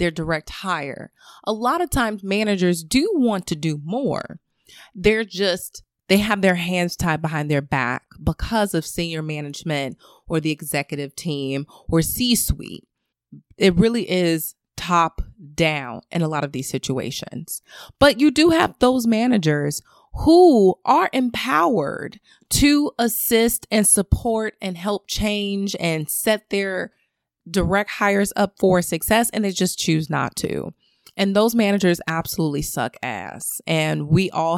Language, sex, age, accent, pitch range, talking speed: English, female, 20-39, American, 160-210 Hz, 145 wpm